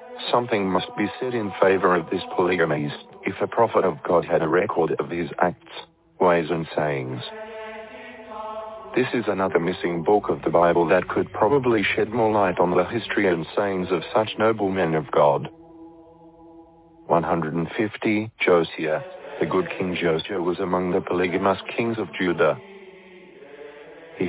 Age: 50-69